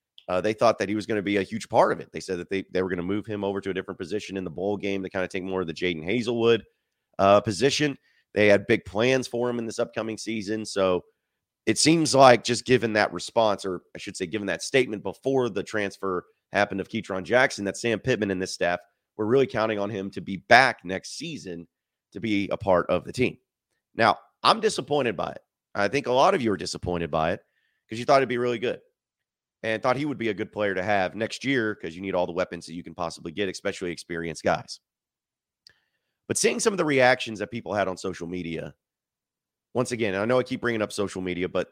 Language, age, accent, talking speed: English, 30-49, American, 245 wpm